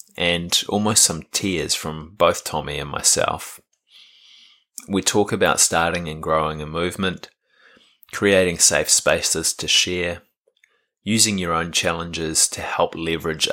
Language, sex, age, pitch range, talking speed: English, male, 20-39, 75-95 Hz, 130 wpm